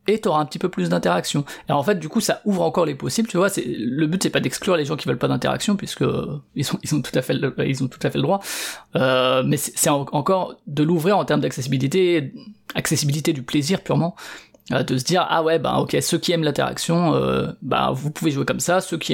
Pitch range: 135-175 Hz